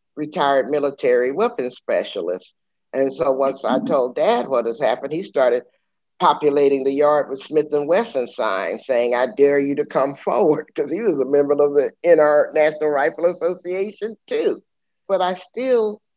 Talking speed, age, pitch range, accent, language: 165 wpm, 50-69, 135-180 Hz, American, English